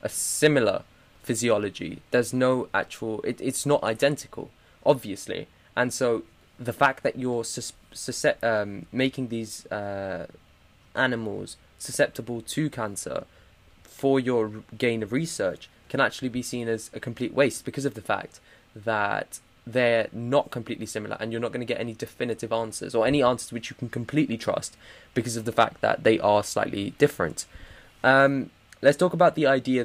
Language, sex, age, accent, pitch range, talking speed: English, male, 20-39, British, 110-130 Hz, 165 wpm